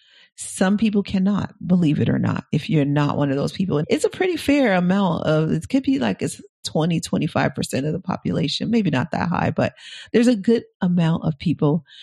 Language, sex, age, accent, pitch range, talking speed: English, female, 40-59, American, 175-225 Hz, 205 wpm